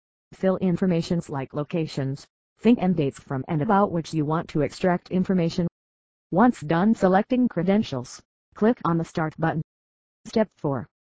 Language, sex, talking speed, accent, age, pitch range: English, female, 145 wpm, American, 40-59, 140-185 Hz